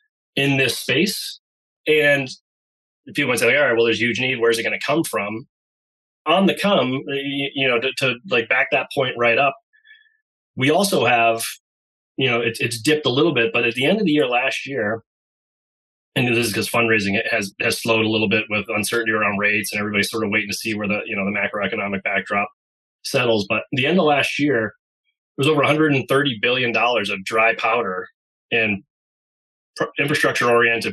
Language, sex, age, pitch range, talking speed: English, male, 30-49, 110-140 Hz, 195 wpm